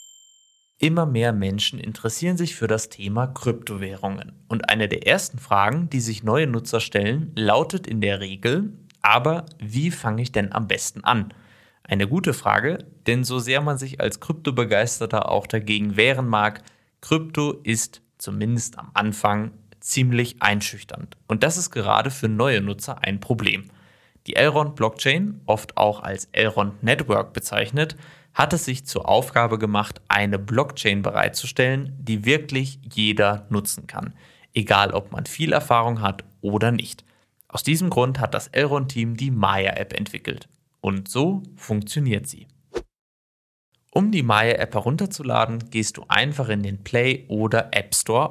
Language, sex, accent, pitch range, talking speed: German, male, German, 105-140 Hz, 145 wpm